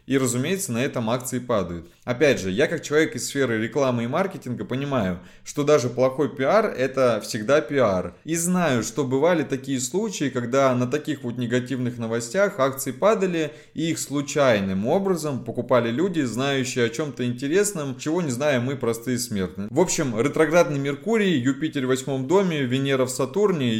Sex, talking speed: male, 165 wpm